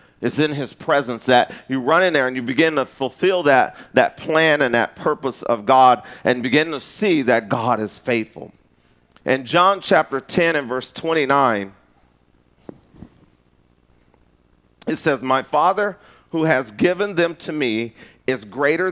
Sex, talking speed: male, 155 wpm